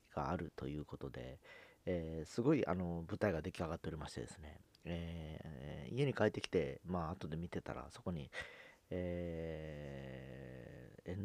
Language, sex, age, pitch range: Japanese, male, 40-59, 80-105 Hz